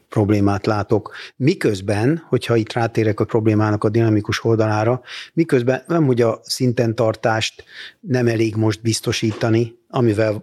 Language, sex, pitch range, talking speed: Hungarian, male, 110-125 Hz, 125 wpm